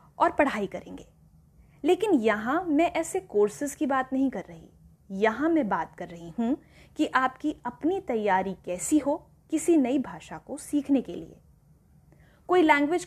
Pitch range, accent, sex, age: 220-310 Hz, native, female, 20-39